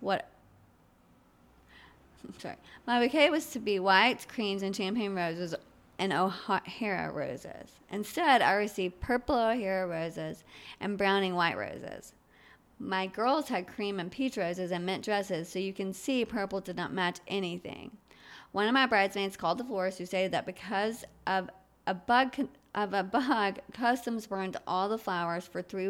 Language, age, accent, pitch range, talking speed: English, 30-49, American, 180-210 Hz, 160 wpm